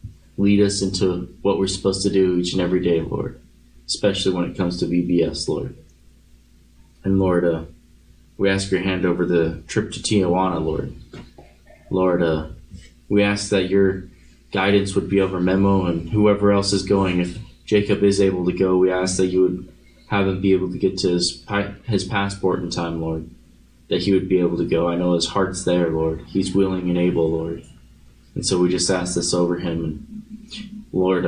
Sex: male